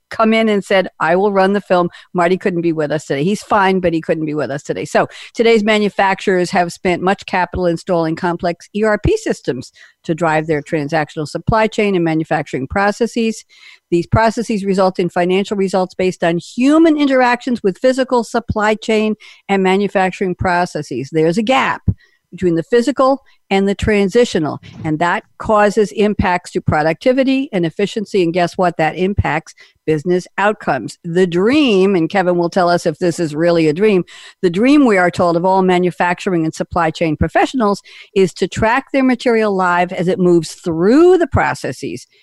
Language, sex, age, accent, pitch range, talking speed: English, female, 50-69, American, 170-220 Hz, 175 wpm